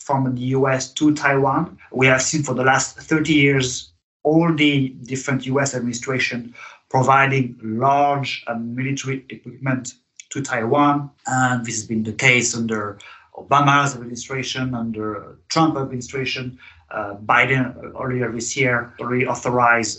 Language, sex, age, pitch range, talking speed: English, male, 30-49, 120-140 Hz, 125 wpm